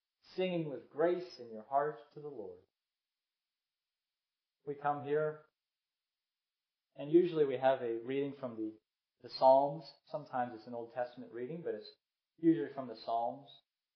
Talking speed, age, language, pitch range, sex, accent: 145 wpm, 30-49, English, 125-170 Hz, male, American